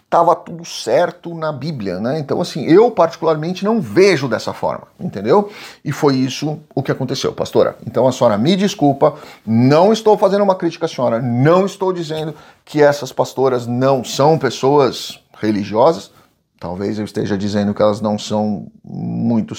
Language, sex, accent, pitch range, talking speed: Portuguese, male, Brazilian, 120-170 Hz, 160 wpm